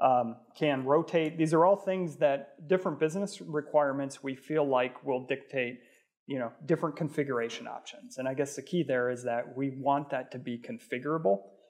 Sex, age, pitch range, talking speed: male, 30-49, 130-165 Hz, 180 wpm